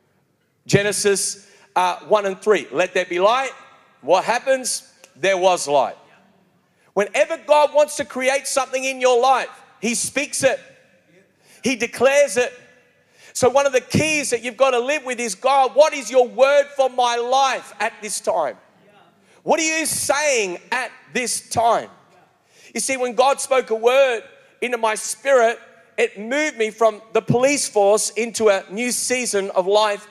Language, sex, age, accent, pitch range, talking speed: English, male, 40-59, Australian, 210-265 Hz, 165 wpm